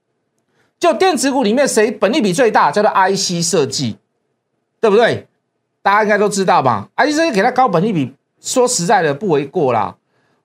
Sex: male